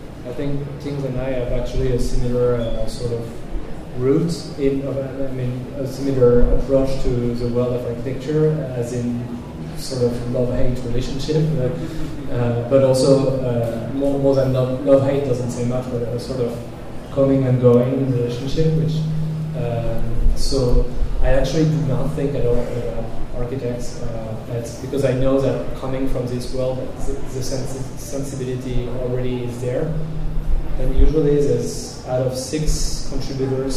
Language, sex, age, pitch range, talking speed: English, male, 20-39, 120-135 Hz, 155 wpm